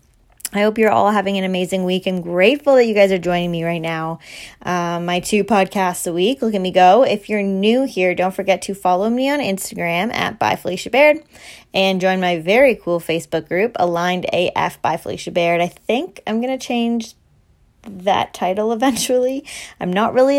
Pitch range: 180-230 Hz